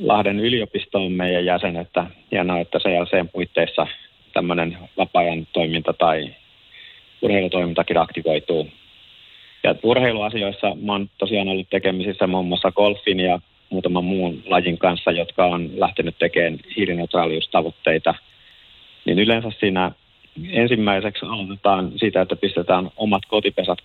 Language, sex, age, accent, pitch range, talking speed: Finnish, male, 30-49, native, 85-100 Hz, 110 wpm